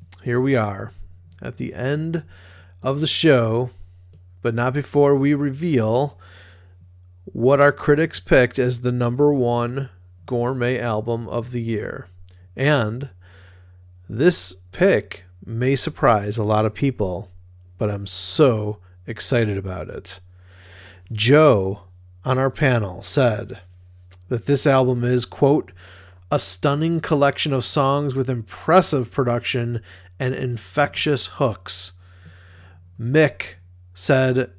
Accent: American